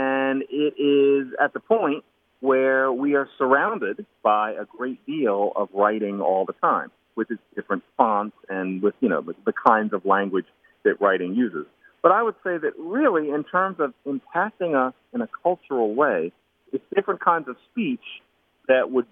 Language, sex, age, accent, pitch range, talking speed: English, male, 40-59, American, 110-165 Hz, 175 wpm